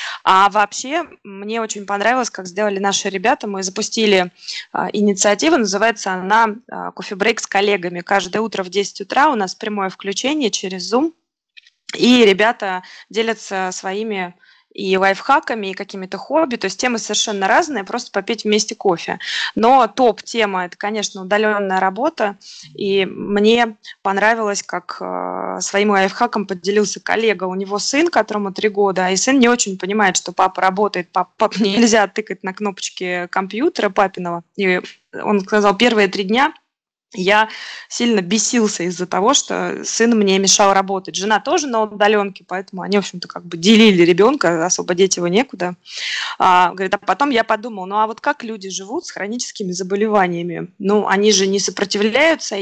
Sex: female